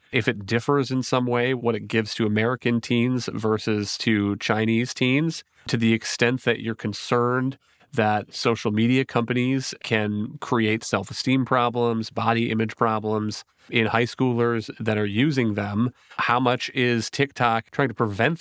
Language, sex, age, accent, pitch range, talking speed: English, male, 30-49, American, 110-125 Hz, 155 wpm